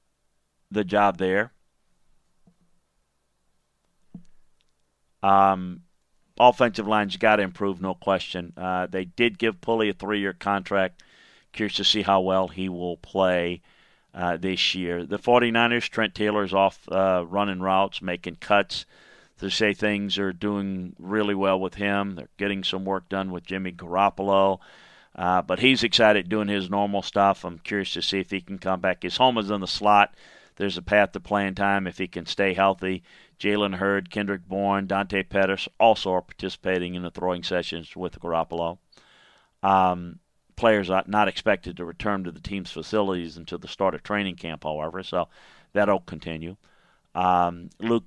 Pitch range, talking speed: 90-105 Hz, 160 wpm